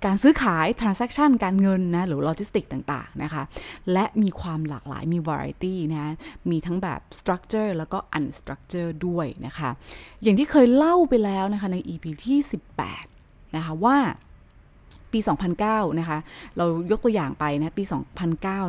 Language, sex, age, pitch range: Thai, female, 20-39, 155-215 Hz